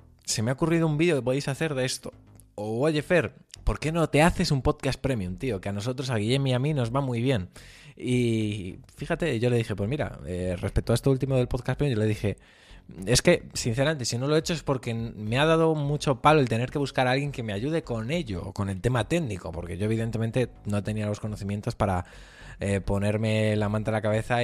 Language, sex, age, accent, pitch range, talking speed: Spanish, male, 20-39, Spanish, 100-125 Hz, 240 wpm